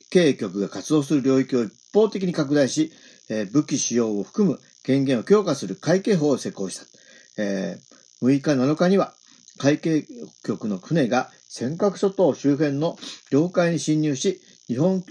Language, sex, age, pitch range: Japanese, male, 50-69, 145-195 Hz